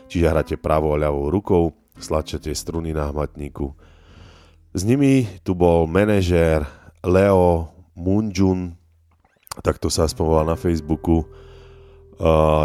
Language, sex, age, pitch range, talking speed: Slovak, male, 30-49, 75-90 Hz, 120 wpm